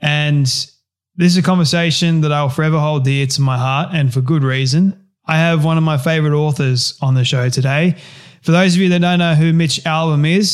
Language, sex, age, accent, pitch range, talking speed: English, male, 20-39, Australian, 145-170 Hz, 220 wpm